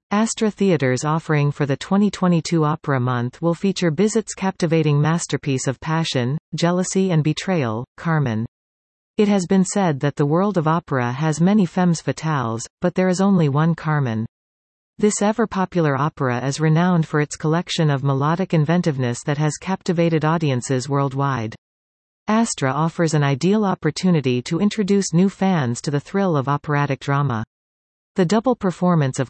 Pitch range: 135-180 Hz